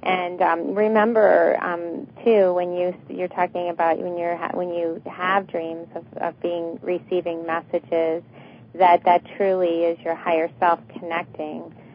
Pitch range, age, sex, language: 165-185 Hz, 30-49, female, English